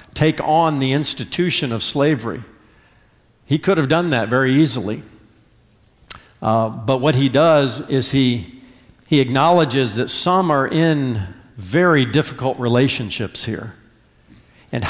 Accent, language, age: American, English, 50-69